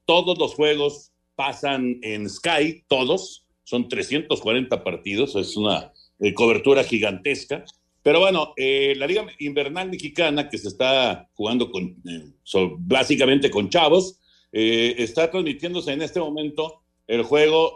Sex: male